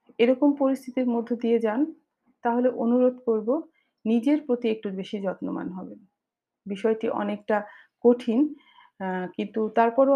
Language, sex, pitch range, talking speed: Bengali, female, 210-255 Hz, 100 wpm